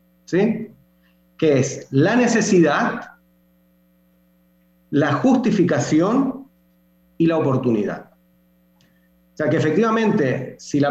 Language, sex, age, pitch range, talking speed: Spanish, male, 40-59, 120-190 Hz, 90 wpm